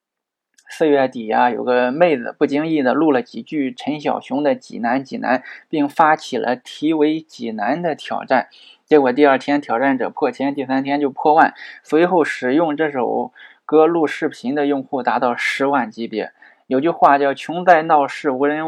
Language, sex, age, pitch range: Chinese, male, 20-39, 130-170 Hz